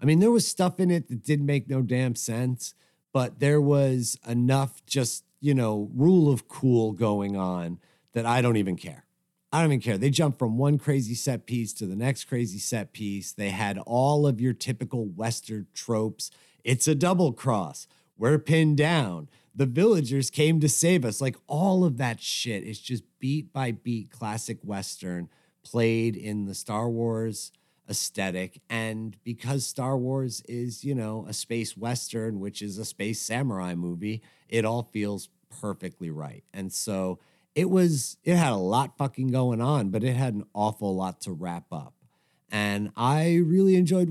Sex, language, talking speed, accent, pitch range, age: male, English, 180 wpm, American, 105-140 Hz, 40-59